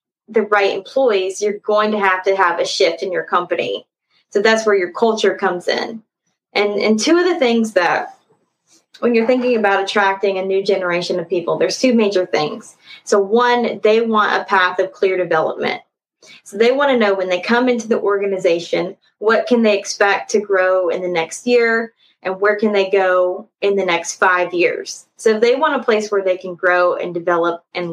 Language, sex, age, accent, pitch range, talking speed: English, female, 20-39, American, 185-225 Hz, 200 wpm